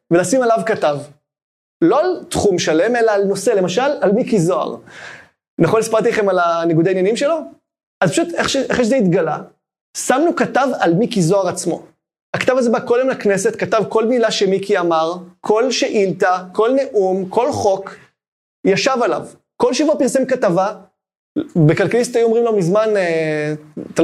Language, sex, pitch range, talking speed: Hebrew, male, 185-250 Hz, 150 wpm